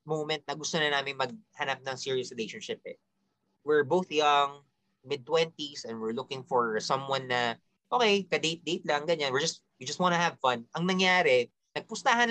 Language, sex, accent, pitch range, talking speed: Filipino, male, native, 140-205 Hz, 170 wpm